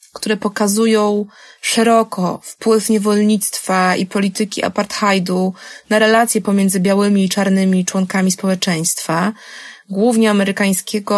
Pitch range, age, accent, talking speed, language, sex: 190-220 Hz, 20-39, native, 95 wpm, Polish, female